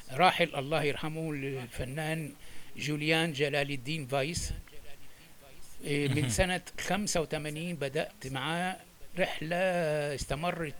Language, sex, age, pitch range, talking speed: Arabic, male, 60-79, 140-170 Hz, 85 wpm